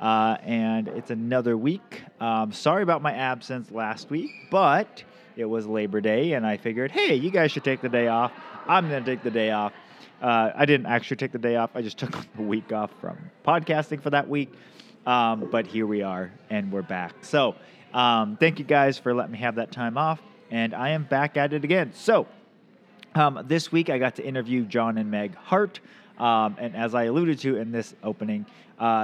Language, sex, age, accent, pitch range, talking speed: English, male, 30-49, American, 115-155 Hz, 215 wpm